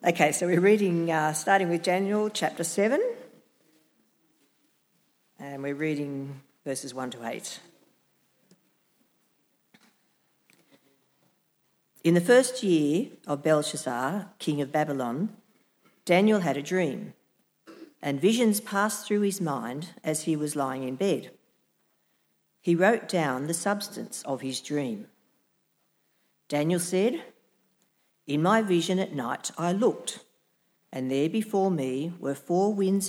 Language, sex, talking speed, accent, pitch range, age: English, female, 120 wpm, Australian, 145-195 Hz, 50-69